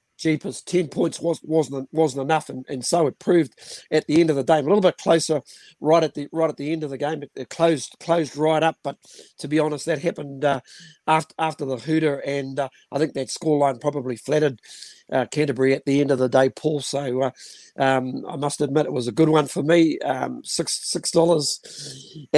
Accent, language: Australian, English